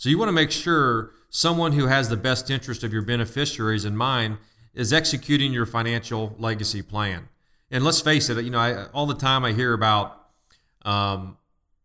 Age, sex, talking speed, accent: 40-59, male, 185 wpm, American